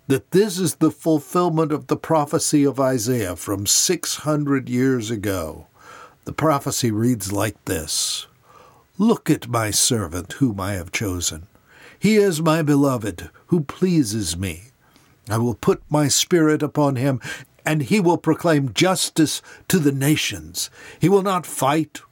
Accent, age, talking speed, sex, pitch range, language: American, 60-79, 145 wpm, male, 115-155 Hz, English